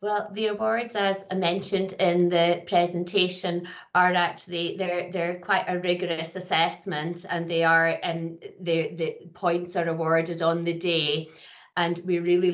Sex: female